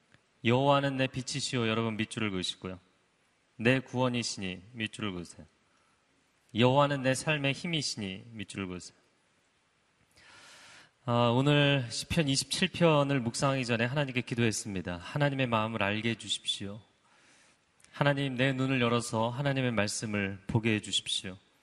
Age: 30-49